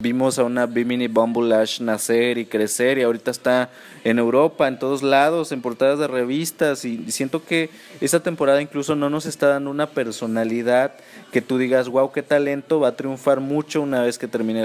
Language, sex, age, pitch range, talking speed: Spanish, male, 30-49, 120-155 Hz, 195 wpm